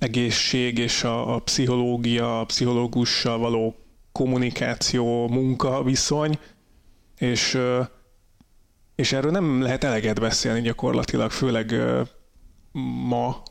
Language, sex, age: Hungarian, male, 30-49